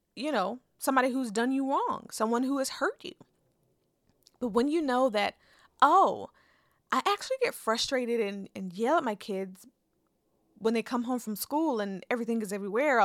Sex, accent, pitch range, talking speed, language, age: female, American, 210-260 Hz, 175 wpm, English, 20-39